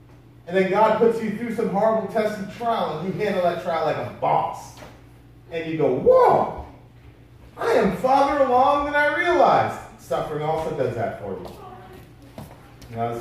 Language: English